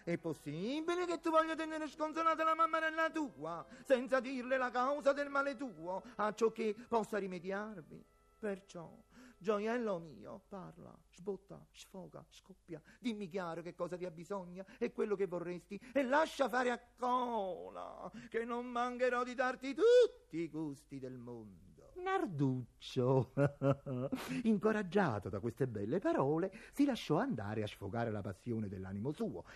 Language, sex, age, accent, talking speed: Italian, male, 40-59, native, 145 wpm